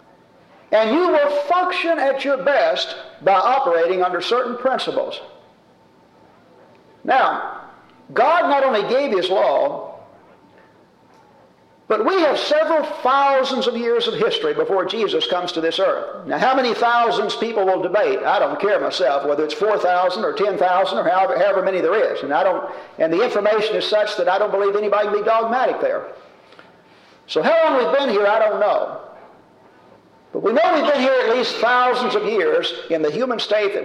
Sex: male